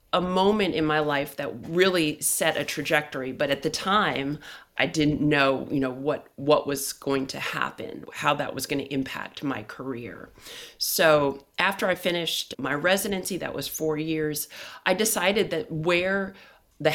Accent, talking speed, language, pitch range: American, 170 wpm, English, 140-175 Hz